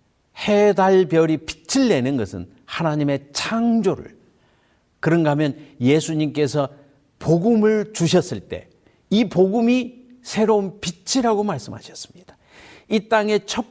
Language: Korean